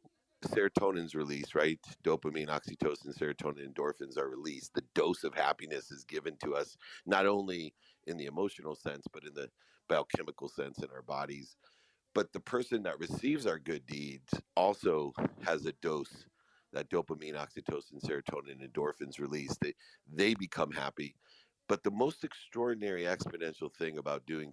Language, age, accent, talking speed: English, 50-69, American, 150 wpm